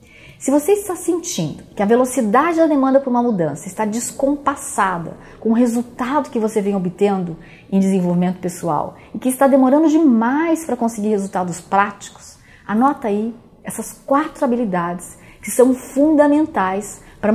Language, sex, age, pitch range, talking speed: Portuguese, female, 40-59, 190-255 Hz, 145 wpm